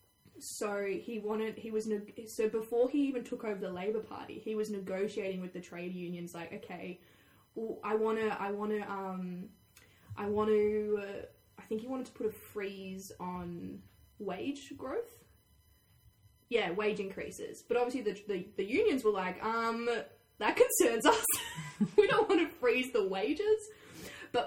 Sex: female